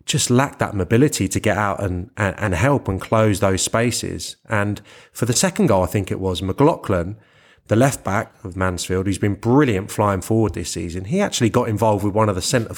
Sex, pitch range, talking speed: male, 100-135 Hz, 205 wpm